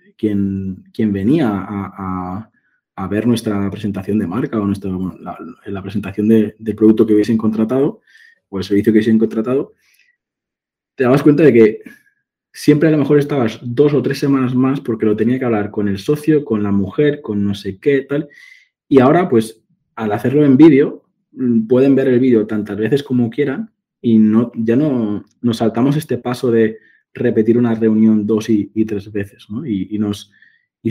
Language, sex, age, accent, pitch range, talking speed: Spanish, male, 20-39, Spanish, 105-130 Hz, 185 wpm